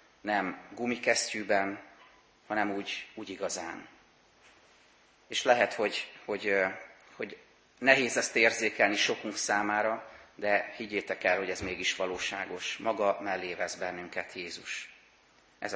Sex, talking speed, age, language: male, 105 wpm, 30-49, Hungarian